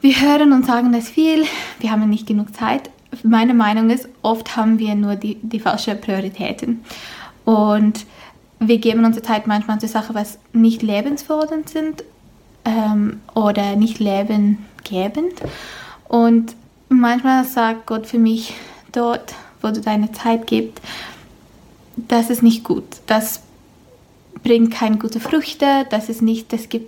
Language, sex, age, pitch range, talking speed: German, female, 20-39, 215-240 Hz, 145 wpm